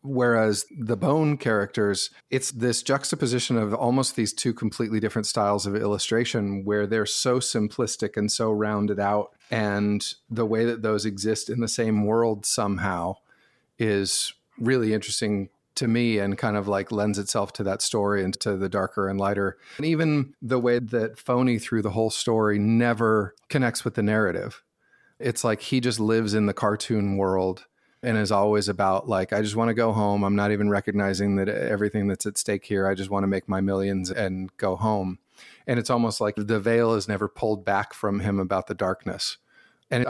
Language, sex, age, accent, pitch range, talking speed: English, male, 40-59, American, 100-115 Hz, 190 wpm